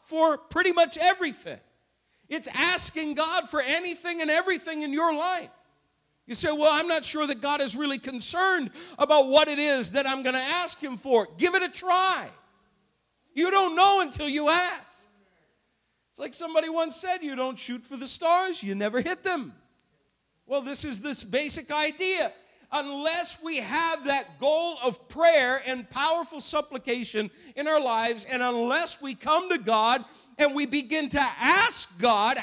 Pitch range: 230-325 Hz